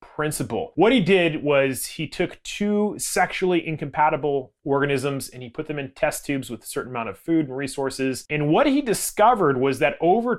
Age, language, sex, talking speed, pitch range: 30-49, English, male, 190 wpm, 135-185 Hz